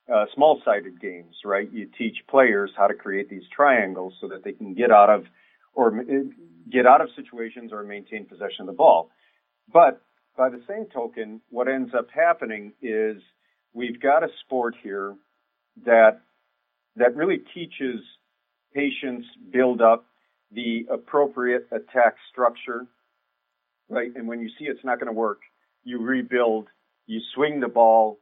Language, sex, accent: English, male, American